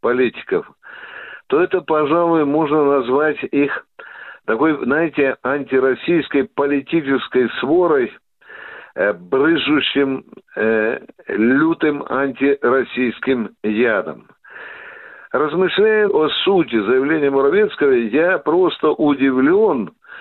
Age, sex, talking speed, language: 60-79, male, 75 wpm, Russian